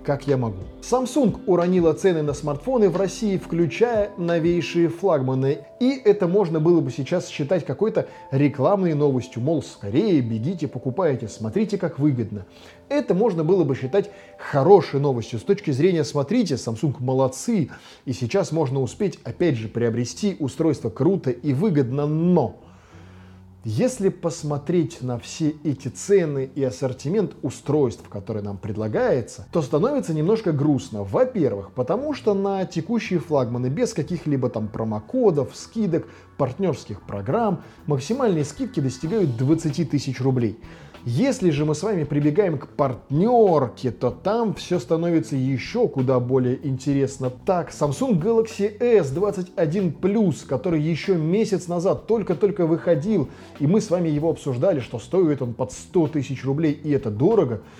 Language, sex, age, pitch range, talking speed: Russian, male, 20-39, 125-185 Hz, 140 wpm